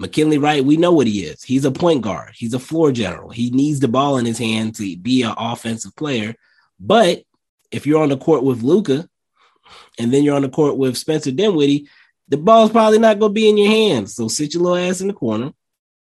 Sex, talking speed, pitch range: male, 230 wpm, 110-150 Hz